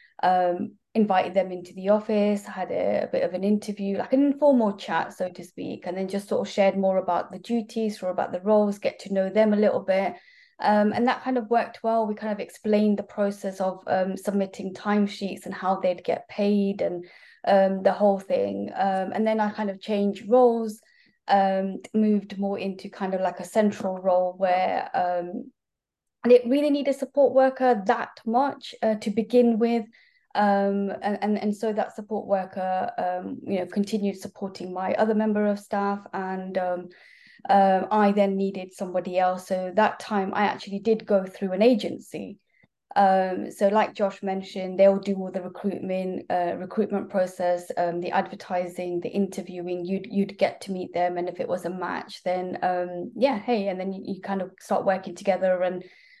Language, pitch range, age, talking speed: English, 185-215 Hz, 30-49, 195 wpm